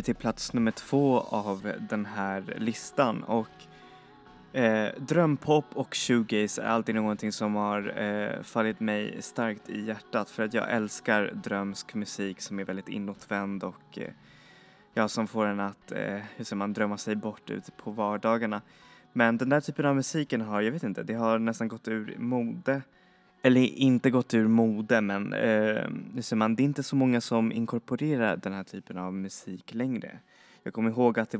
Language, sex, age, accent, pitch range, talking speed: Swedish, male, 20-39, native, 100-120 Hz, 180 wpm